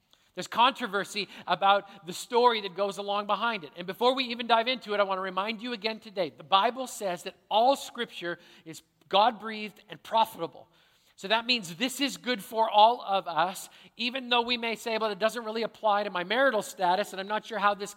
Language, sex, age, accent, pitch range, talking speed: English, male, 40-59, American, 195-235 Hz, 215 wpm